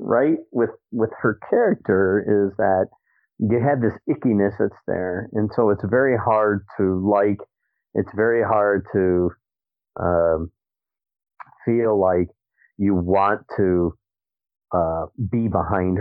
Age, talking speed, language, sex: 50-69, 125 wpm, English, male